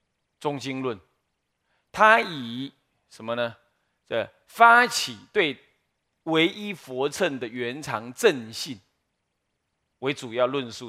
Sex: male